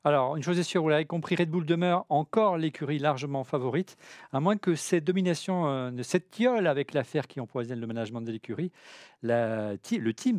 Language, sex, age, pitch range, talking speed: French, male, 40-59, 115-150 Hz, 200 wpm